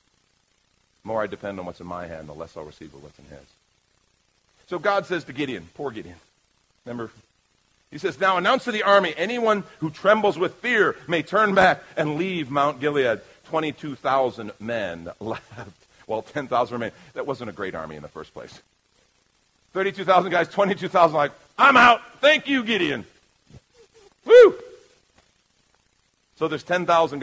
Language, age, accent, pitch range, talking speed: English, 40-59, American, 120-190 Hz, 155 wpm